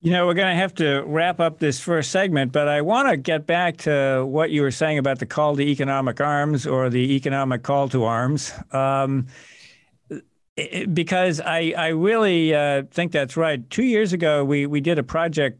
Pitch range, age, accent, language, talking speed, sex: 130-160 Hz, 50-69, American, English, 205 wpm, male